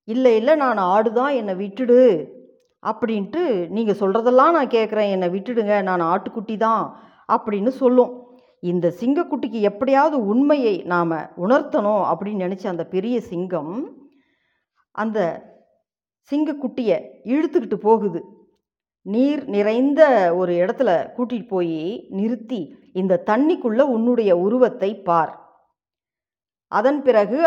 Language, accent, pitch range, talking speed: Tamil, native, 190-270 Hz, 105 wpm